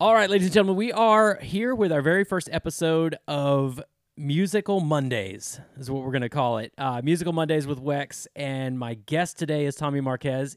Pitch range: 125-160 Hz